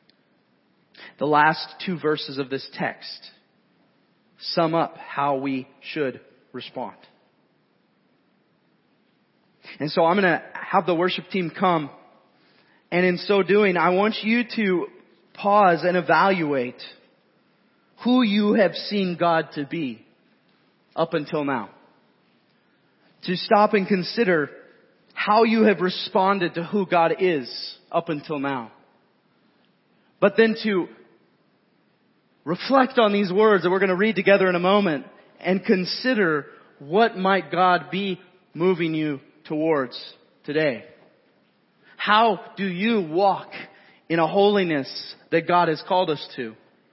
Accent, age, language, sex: American, 30-49, English, male